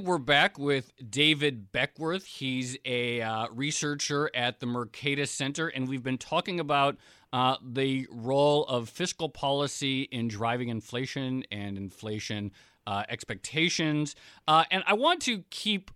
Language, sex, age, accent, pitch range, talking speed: English, male, 40-59, American, 120-150 Hz, 140 wpm